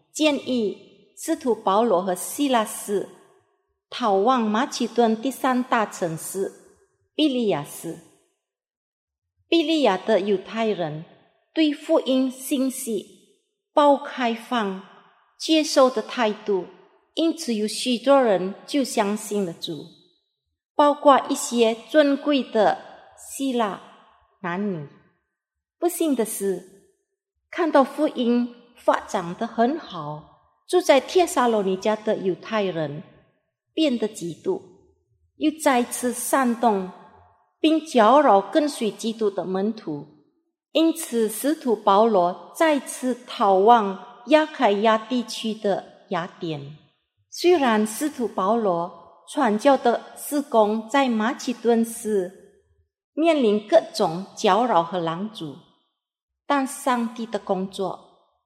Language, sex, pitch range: Indonesian, female, 195-280 Hz